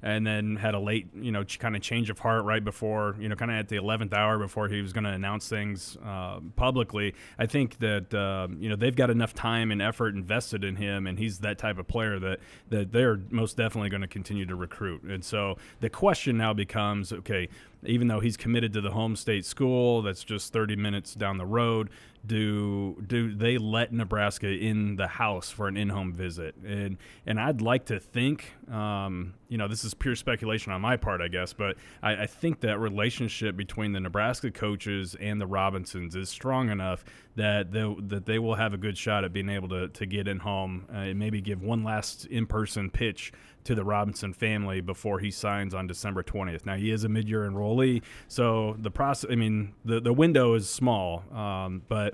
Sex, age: male, 30-49